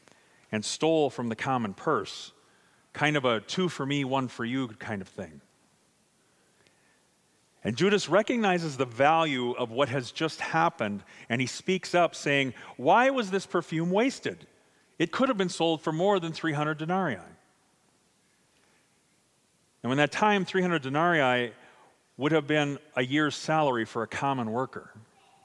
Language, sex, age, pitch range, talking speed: English, male, 40-59, 120-160 Hz, 140 wpm